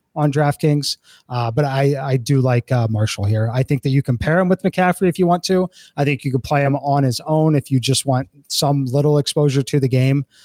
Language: English